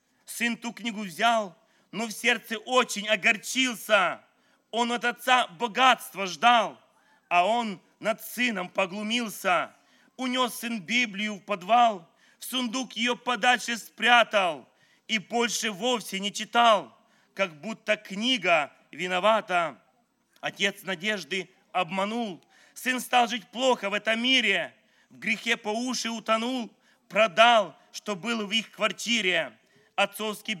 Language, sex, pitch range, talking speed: English, male, 200-235 Hz, 120 wpm